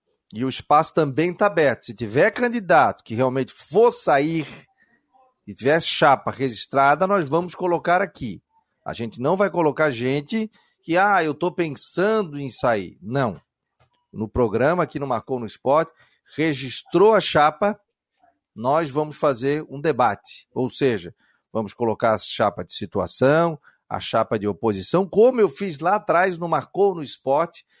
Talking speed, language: 155 wpm, Portuguese